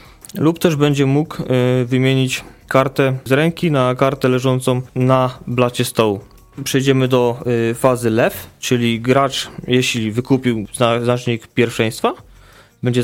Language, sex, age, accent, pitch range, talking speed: Polish, male, 20-39, native, 120-155 Hz, 115 wpm